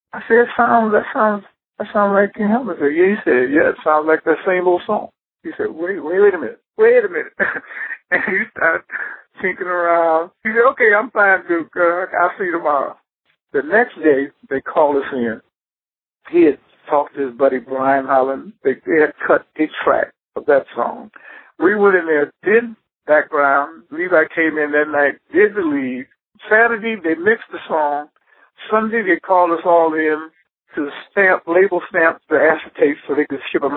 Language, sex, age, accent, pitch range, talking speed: English, male, 60-79, American, 145-215 Hz, 190 wpm